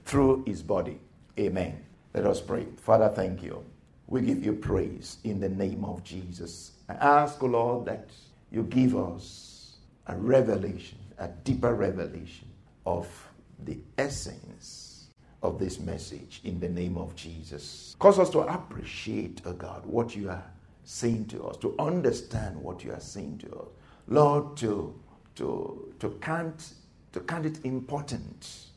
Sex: male